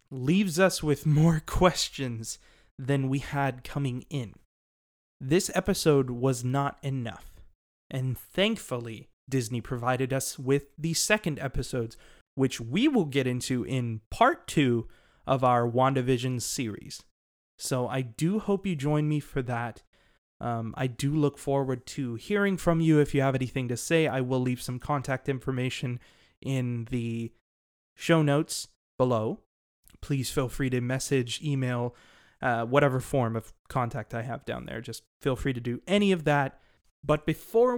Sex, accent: male, American